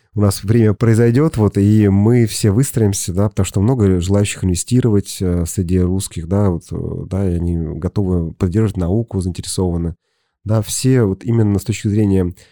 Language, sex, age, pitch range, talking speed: Russian, male, 30-49, 95-110 Hz, 160 wpm